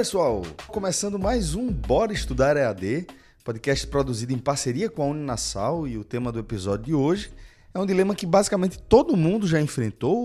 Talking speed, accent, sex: 175 wpm, Brazilian, male